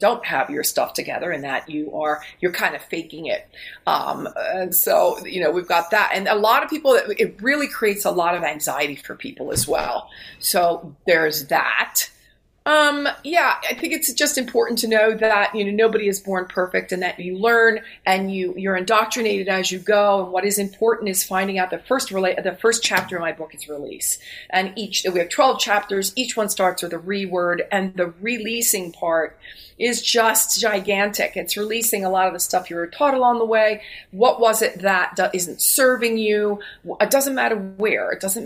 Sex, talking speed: female, 205 wpm